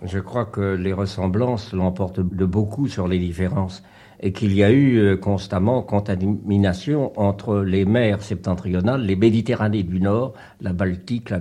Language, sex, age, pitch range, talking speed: French, male, 60-79, 95-110 Hz, 155 wpm